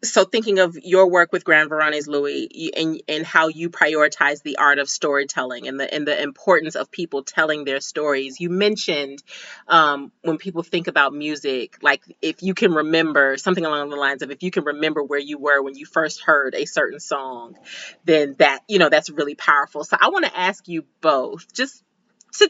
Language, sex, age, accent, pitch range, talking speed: English, female, 30-49, American, 155-230 Hz, 205 wpm